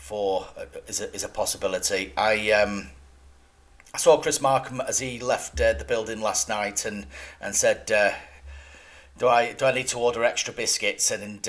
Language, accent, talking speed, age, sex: English, British, 180 wpm, 40-59, male